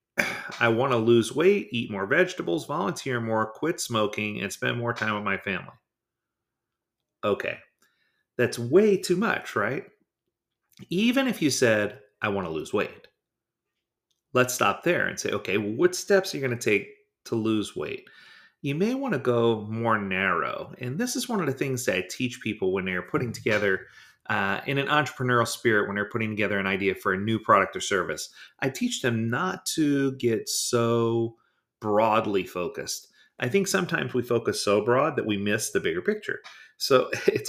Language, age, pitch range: English, 40-59, 110-180 Hz